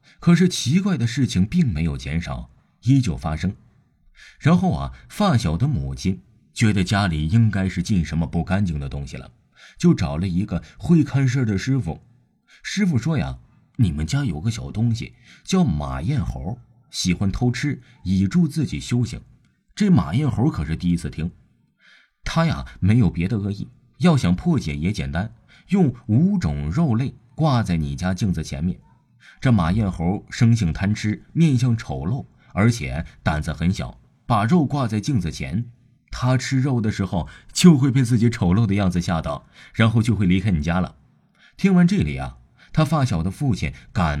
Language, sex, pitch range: Chinese, male, 85-135 Hz